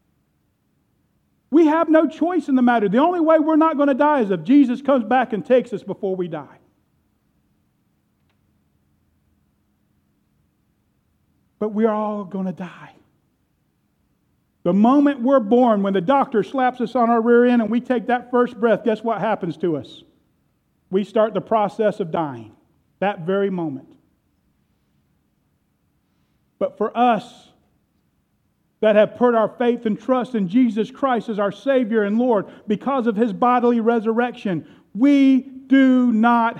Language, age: English, 40-59